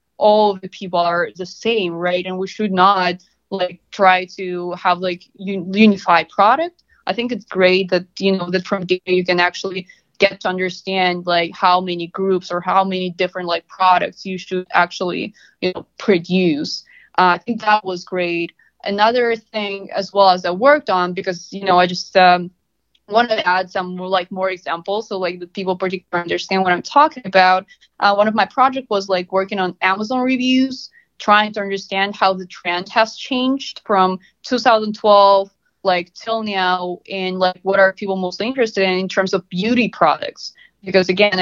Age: 20-39